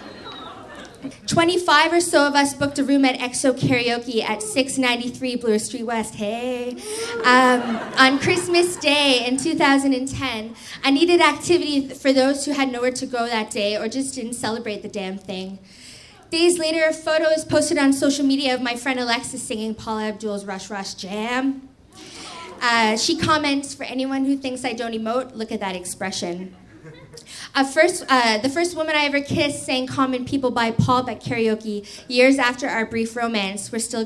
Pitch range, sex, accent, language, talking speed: 220-285 Hz, female, American, English, 170 wpm